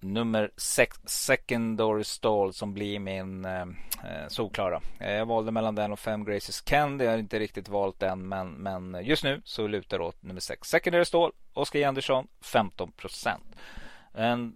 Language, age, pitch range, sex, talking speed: Swedish, 30-49, 100-115 Hz, male, 160 wpm